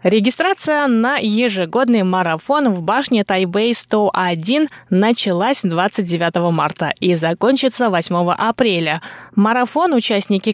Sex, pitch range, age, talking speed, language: female, 185-245 Hz, 20-39, 90 wpm, Russian